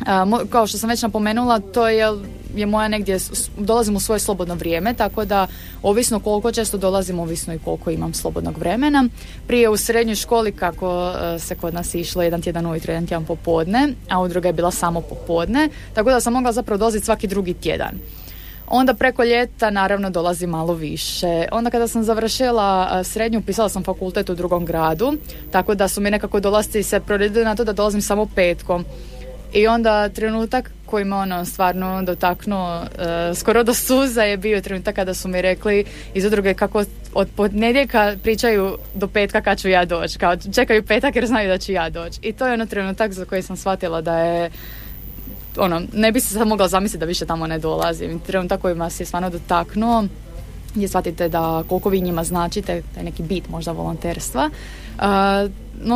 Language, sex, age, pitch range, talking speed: Croatian, female, 20-39, 175-220 Hz, 190 wpm